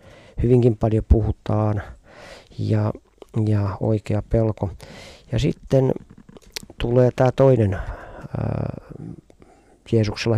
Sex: male